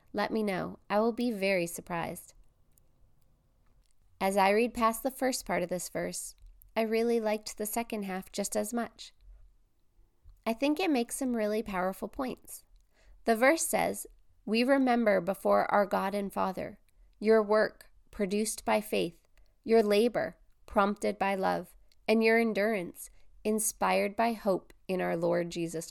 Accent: American